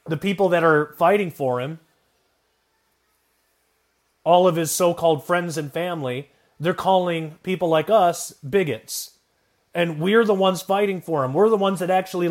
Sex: male